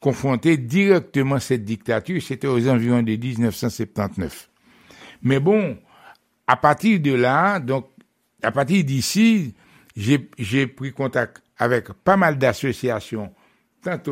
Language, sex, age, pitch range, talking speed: French, male, 60-79, 120-150 Hz, 120 wpm